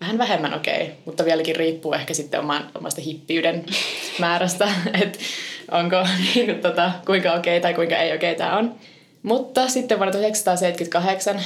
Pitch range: 160-185 Hz